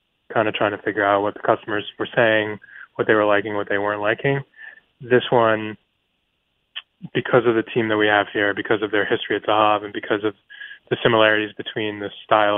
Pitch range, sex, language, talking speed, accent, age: 105-125 Hz, male, English, 205 wpm, American, 20-39